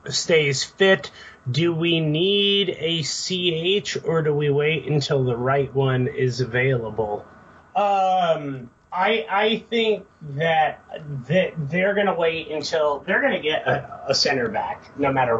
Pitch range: 140-190 Hz